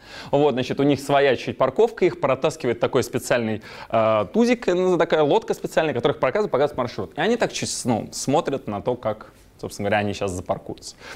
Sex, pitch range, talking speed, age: male, 130-185 Hz, 170 wpm, 20-39